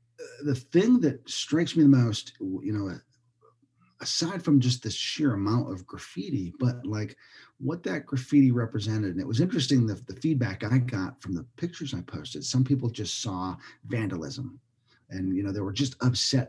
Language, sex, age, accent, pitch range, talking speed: English, male, 40-59, American, 100-135 Hz, 180 wpm